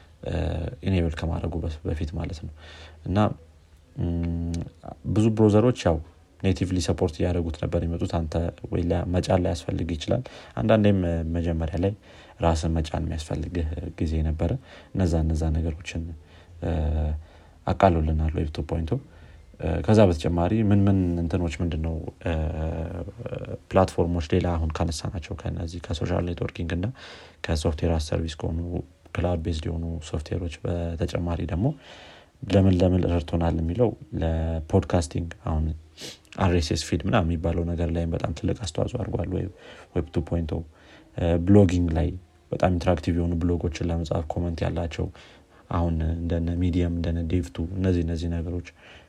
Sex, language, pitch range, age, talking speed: male, Amharic, 85-90 Hz, 30-49, 115 wpm